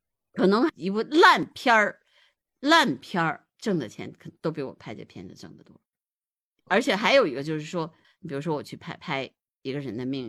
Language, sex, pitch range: Chinese, female, 140-200 Hz